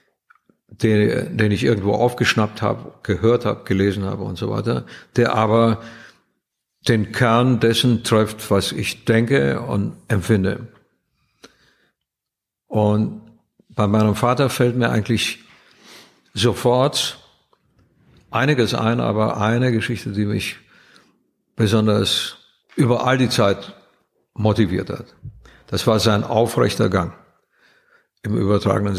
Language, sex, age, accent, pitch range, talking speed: German, male, 60-79, German, 105-120 Hz, 110 wpm